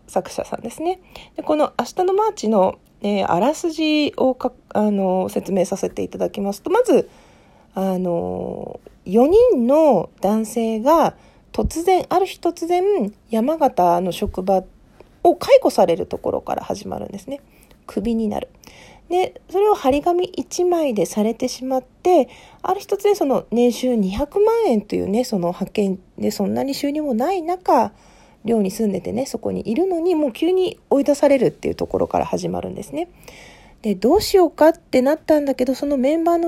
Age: 40-59